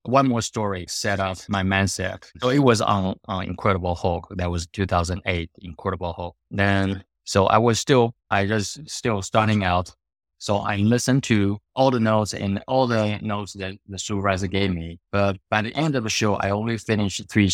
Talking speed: 190 wpm